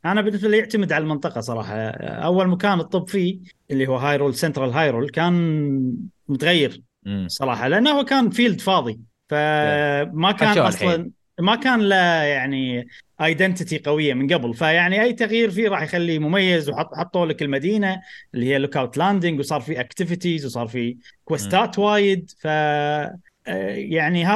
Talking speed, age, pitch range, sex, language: 145 wpm, 30-49, 145-205 Hz, male, Arabic